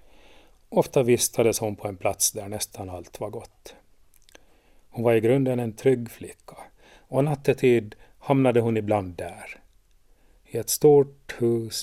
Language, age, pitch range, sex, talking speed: Swedish, 40-59, 105-125 Hz, male, 140 wpm